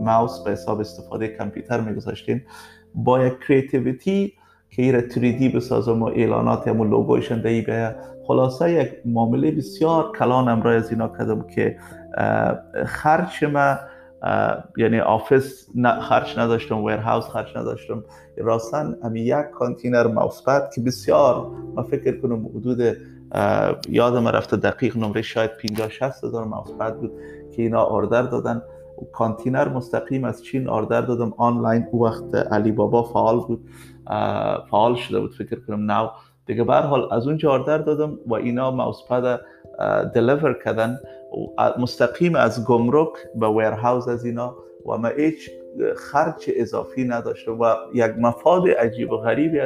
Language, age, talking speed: Persian, 30-49, 135 wpm